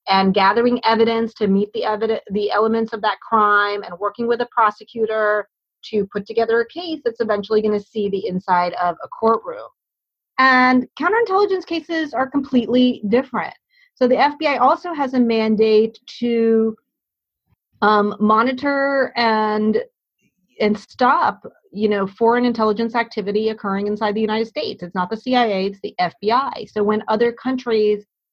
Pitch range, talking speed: 205-250 Hz, 155 wpm